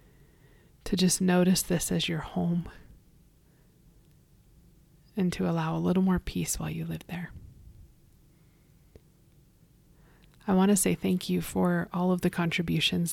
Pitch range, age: 155-175 Hz, 30-49